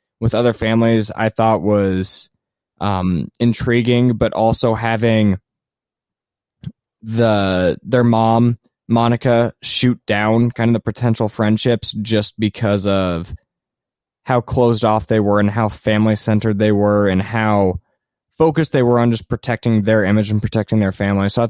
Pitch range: 105-120 Hz